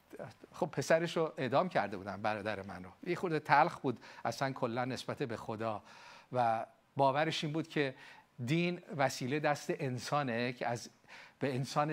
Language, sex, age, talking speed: Persian, male, 50-69, 145 wpm